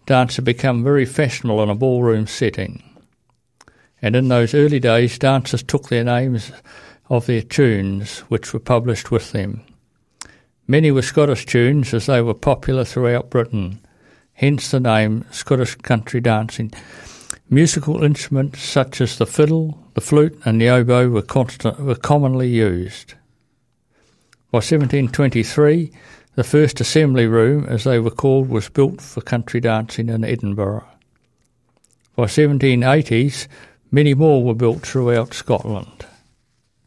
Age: 60-79